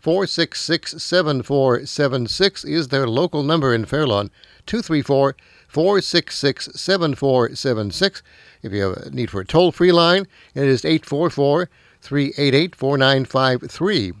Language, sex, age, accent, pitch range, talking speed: English, male, 60-79, American, 115-155 Hz, 80 wpm